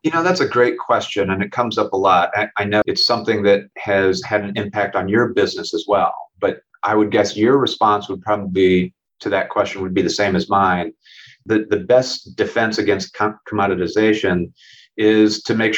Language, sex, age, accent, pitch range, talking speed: English, male, 30-49, American, 100-120 Hz, 210 wpm